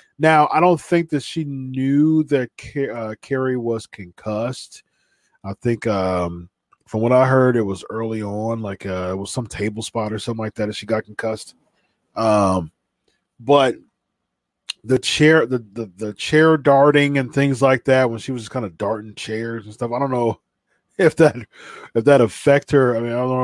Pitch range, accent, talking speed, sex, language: 110-140 Hz, American, 190 wpm, male, English